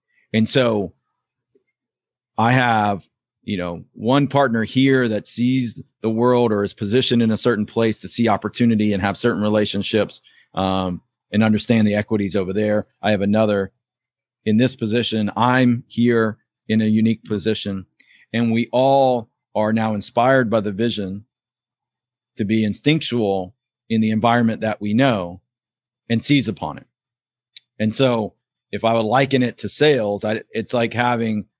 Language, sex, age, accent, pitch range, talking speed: English, male, 40-59, American, 105-125 Hz, 155 wpm